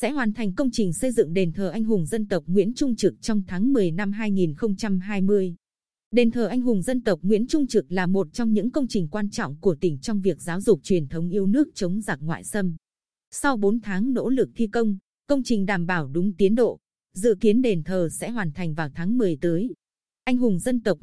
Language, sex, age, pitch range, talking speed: Vietnamese, female, 20-39, 180-235 Hz, 230 wpm